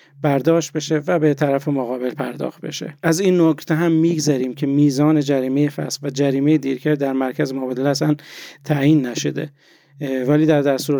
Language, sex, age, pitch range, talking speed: Persian, male, 40-59, 135-160 Hz, 160 wpm